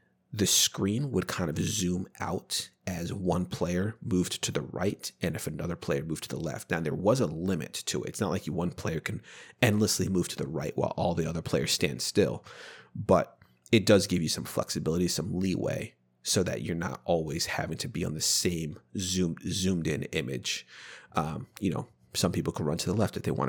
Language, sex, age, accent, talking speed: English, male, 30-49, American, 215 wpm